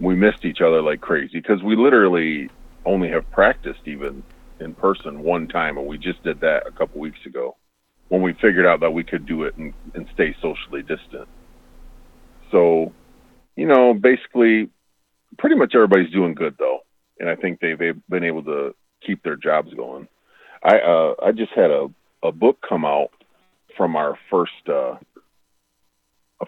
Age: 40-59